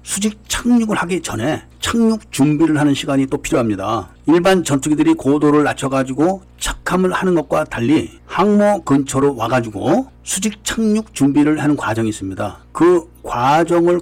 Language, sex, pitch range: Korean, male, 130-185 Hz